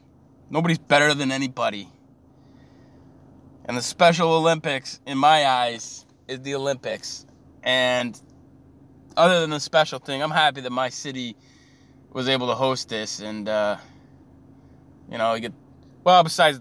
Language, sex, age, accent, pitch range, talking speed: English, male, 20-39, American, 130-165 Hz, 130 wpm